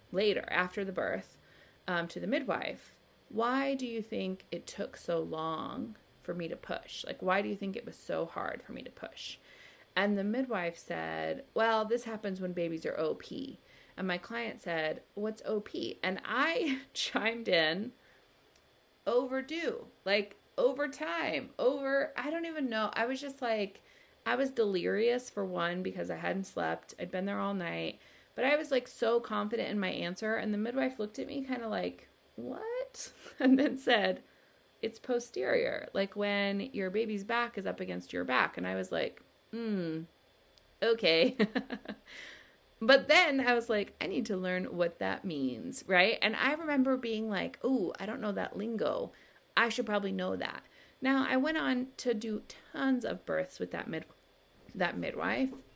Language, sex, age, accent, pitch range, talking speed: English, female, 30-49, American, 195-260 Hz, 175 wpm